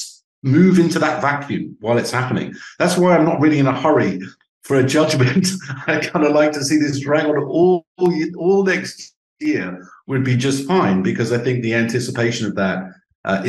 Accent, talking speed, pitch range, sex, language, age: British, 180 wpm, 100-150 Hz, male, English, 50-69